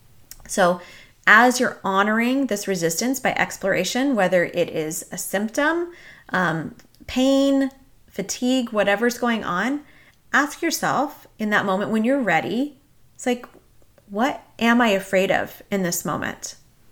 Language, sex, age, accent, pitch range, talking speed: English, female, 30-49, American, 190-260 Hz, 130 wpm